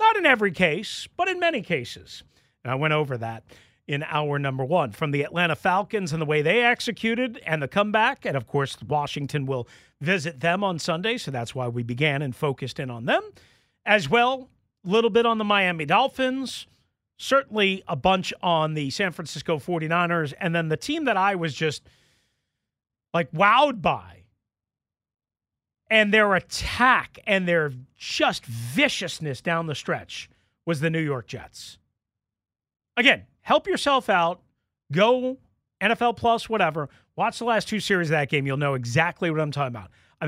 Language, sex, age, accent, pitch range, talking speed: English, male, 40-59, American, 135-220 Hz, 170 wpm